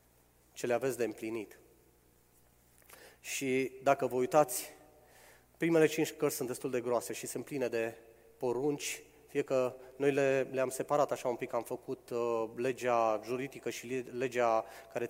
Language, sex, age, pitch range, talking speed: Romanian, male, 30-49, 115-140 Hz, 150 wpm